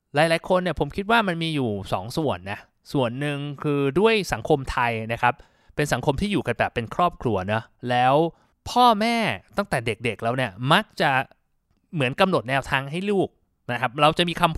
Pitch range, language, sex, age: 125-175 Hz, Thai, male, 20-39